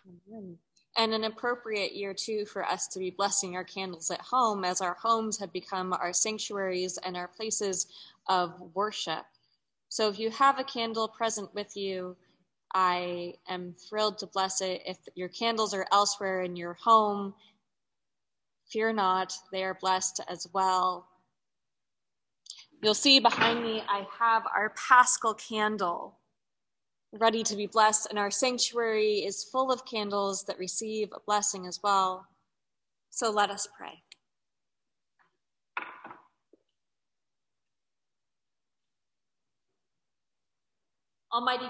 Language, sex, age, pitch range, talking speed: English, female, 20-39, 190-230 Hz, 125 wpm